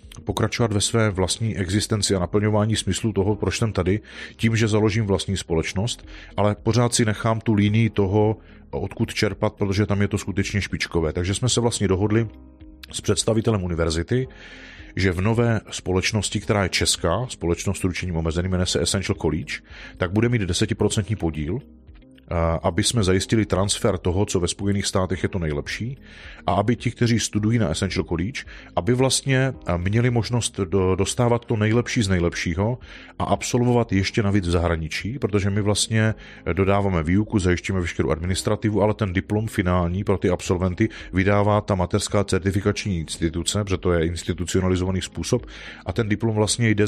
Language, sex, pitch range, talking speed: Czech, male, 90-105 Hz, 160 wpm